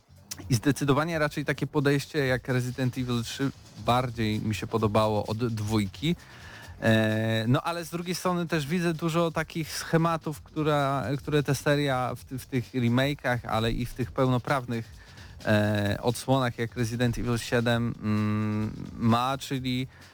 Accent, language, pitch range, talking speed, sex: native, Polish, 110-135 Hz, 130 wpm, male